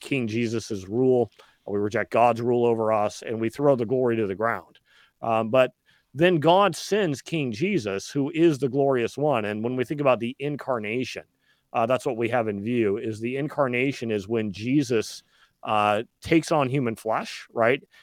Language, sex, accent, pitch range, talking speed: English, male, American, 120-160 Hz, 185 wpm